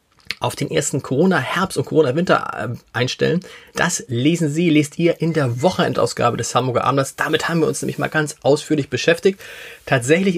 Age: 30-49